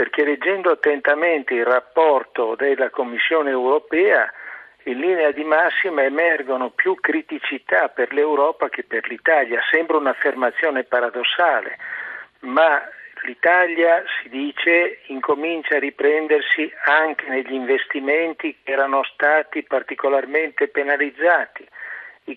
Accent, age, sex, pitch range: native, 50-69, male, 135-165 Hz